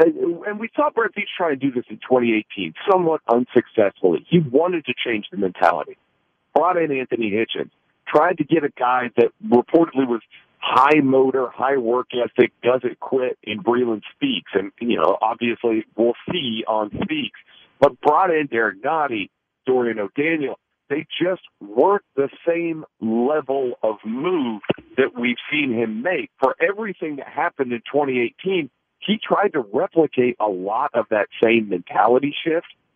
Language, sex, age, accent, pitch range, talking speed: English, male, 50-69, American, 115-160 Hz, 155 wpm